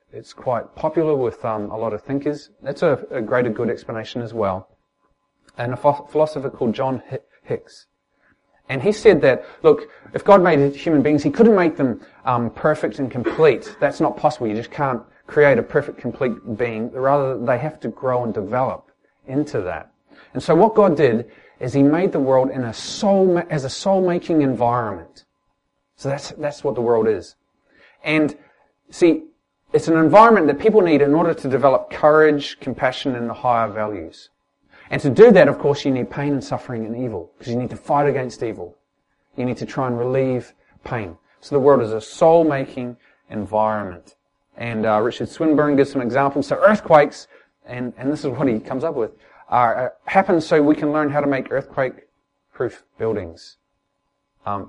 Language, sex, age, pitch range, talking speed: English, male, 30-49, 120-155 Hz, 185 wpm